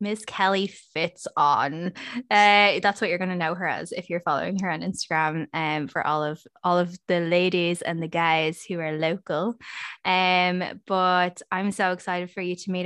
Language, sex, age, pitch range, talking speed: English, female, 10-29, 165-195 Hz, 190 wpm